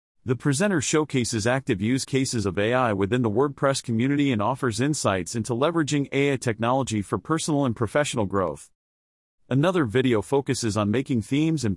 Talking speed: 160 wpm